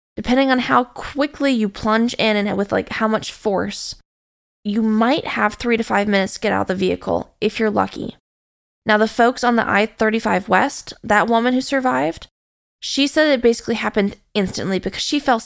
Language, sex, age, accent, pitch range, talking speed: English, female, 20-39, American, 210-250 Hz, 190 wpm